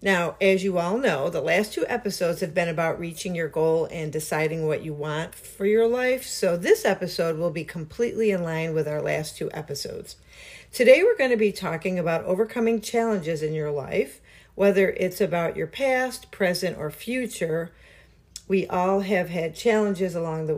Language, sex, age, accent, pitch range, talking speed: English, female, 50-69, American, 160-215 Hz, 185 wpm